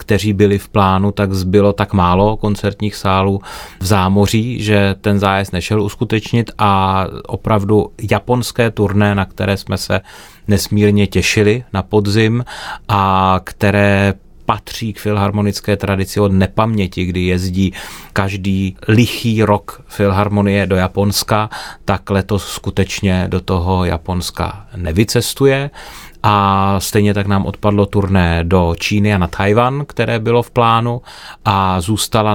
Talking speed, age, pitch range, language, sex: 130 wpm, 30-49, 95-105 Hz, Czech, male